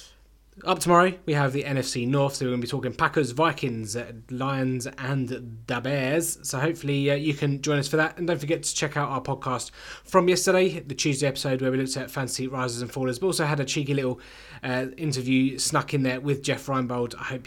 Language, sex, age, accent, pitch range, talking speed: English, male, 20-39, British, 125-150 Hz, 225 wpm